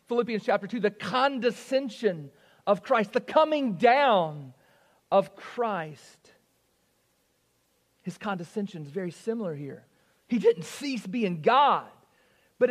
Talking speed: 115 wpm